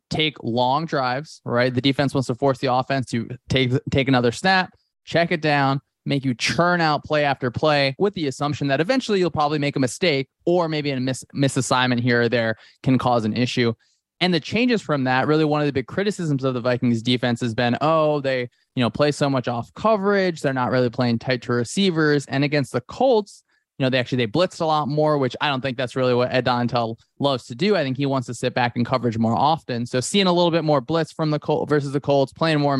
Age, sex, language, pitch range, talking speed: 20-39, male, English, 125-150 Hz, 240 wpm